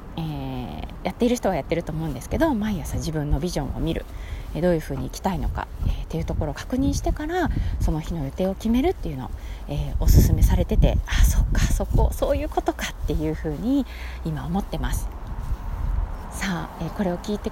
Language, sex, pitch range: Japanese, female, 140-235 Hz